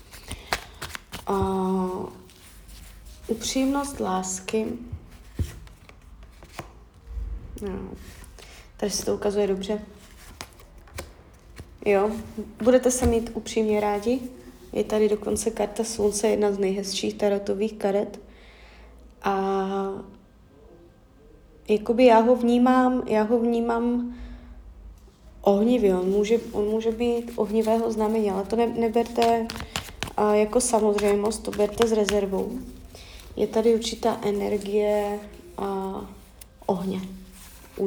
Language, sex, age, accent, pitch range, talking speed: Czech, female, 20-39, native, 200-230 Hz, 90 wpm